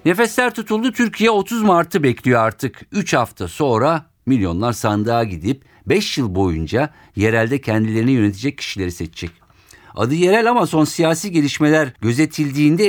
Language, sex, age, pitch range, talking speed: Turkish, male, 50-69, 105-150 Hz, 130 wpm